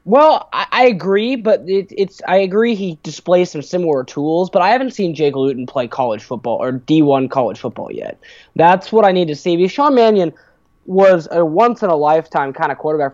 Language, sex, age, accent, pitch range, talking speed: English, male, 20-39, American, 140-185 Hz, 195 wpm